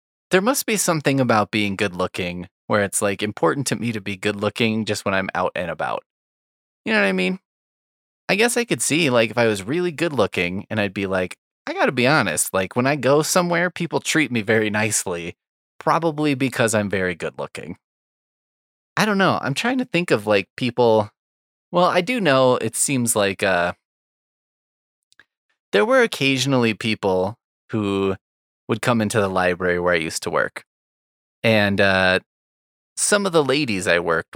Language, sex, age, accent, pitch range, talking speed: English, male, 20-39, American, 95-140 Hz, 180 wpm